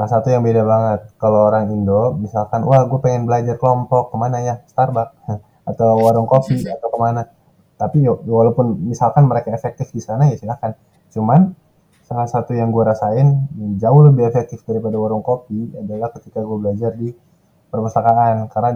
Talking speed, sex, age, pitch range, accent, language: 165 wpm, male, 20-39, 110-130 Hz, native, Indonesian